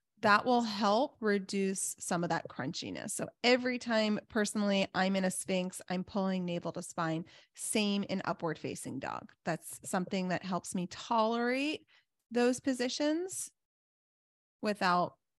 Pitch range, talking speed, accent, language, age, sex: 190-240 Hz, 135 wpm, American, English, 20-39, female